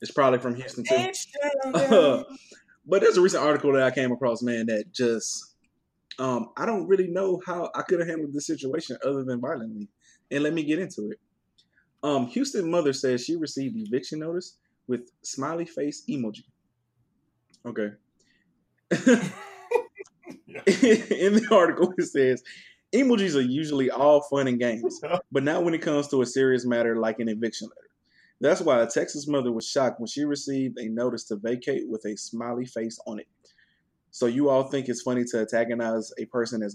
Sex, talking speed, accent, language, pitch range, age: male, 175 wpm, American, English, 120-155 Hz, 20-39